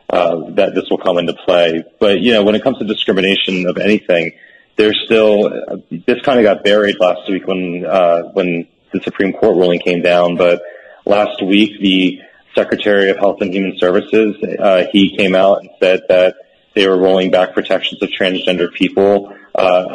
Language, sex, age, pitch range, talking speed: English, male, 30-49, 90-105 Hz, 185 wpm